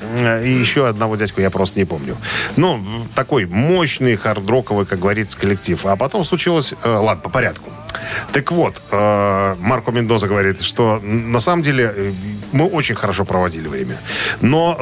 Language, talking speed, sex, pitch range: Russian, 145 wpm, male, 100-135 Hz